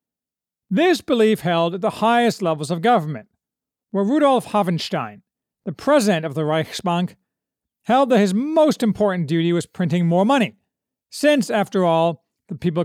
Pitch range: 170-235 Hz